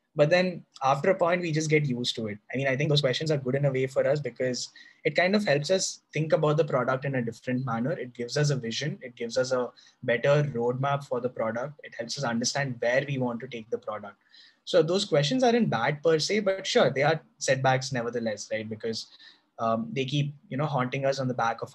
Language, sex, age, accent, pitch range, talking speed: English, male, 20-39, Indian, 120-160 Hz, 245 wpm